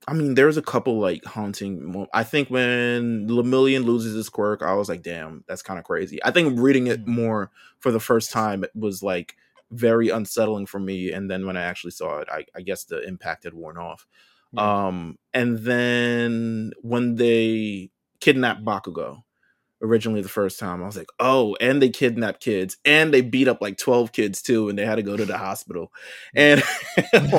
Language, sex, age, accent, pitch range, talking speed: English, male, 20-39, American, 105-125 Hz, 200 wpm